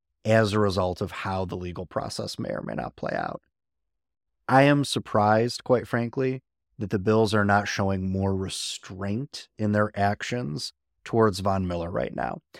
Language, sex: English, male